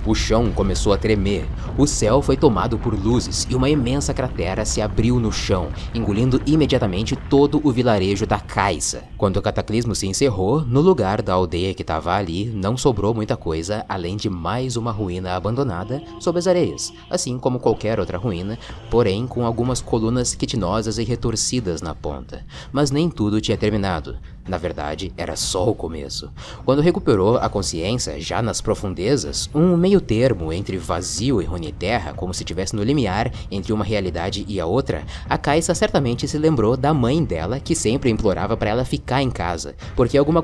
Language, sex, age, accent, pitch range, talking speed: Portuguese, male, 20-39, Brazilian, 95-130 Hz, 180 wpm